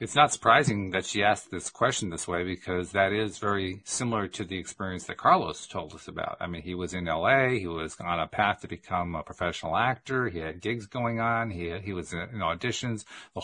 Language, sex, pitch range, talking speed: English, male, 100-130 Hz, 235 wpm